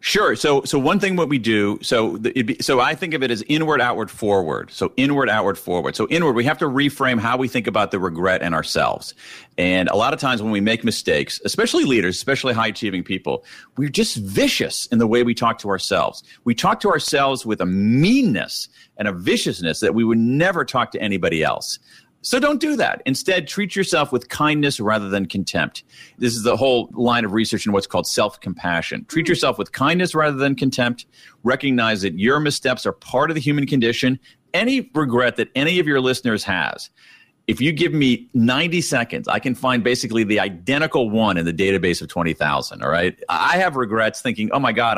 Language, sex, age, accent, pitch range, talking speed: English, male, 40-59, American, 105-140 Hz, 210 wpm